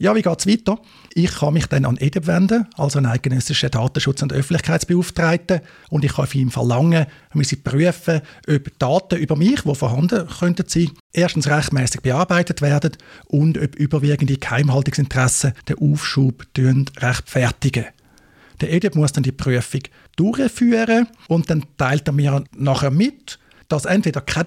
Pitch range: 135-170 Hz